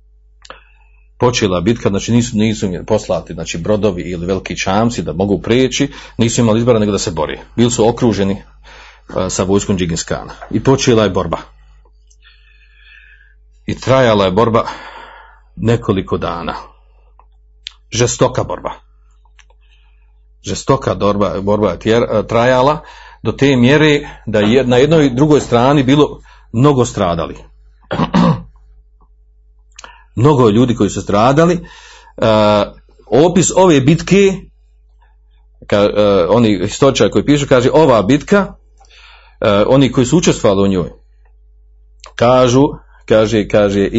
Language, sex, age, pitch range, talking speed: Croatian, male, 40-59, 95-140 Hz, 120 wpm